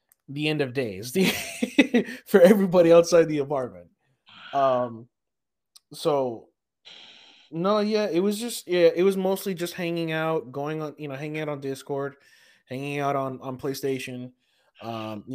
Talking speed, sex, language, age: 145 wpm, male, English, 20-39